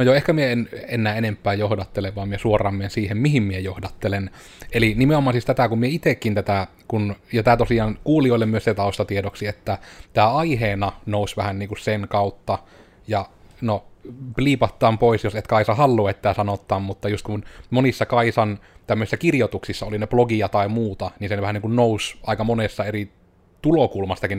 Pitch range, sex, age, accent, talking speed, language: 100-115 Hz, male, 30-49, native, 170 wpm, Finnish